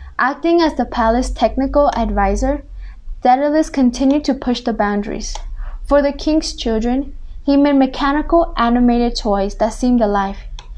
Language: English